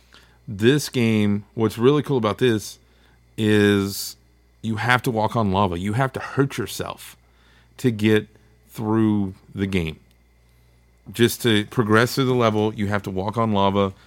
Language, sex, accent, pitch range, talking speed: English, male, American, 90-115 Hz, 155 wpm